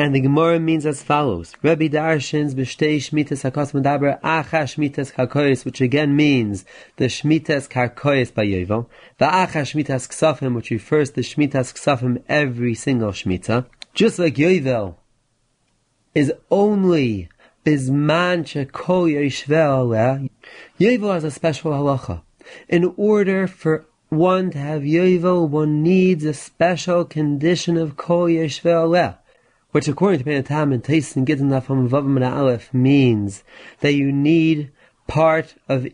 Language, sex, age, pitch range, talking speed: English, male, 30-49, 130-160 Hz, 125 wpm